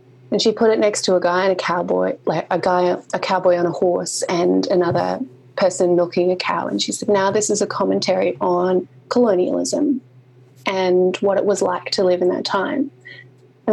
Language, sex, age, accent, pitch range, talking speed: English, female, 20-39, Australian, 175-200 Hz, 200 wpm